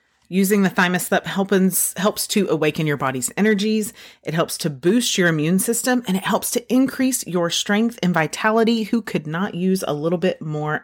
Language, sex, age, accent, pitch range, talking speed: English, female, 30-49, American, 150-200 Hz, 195 wpm